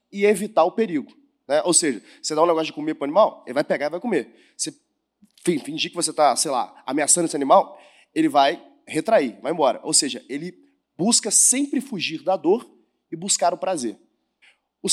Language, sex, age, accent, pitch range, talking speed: Portuguese, male, 20-39, Brazilian, 170-270 Hz, 200 wpm